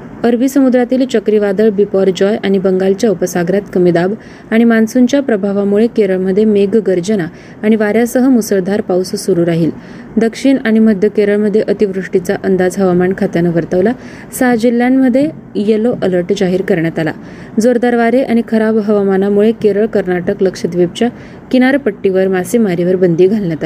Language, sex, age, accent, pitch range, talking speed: Marathi, female, 20-39, native, 190-230 Hz, 120 wpm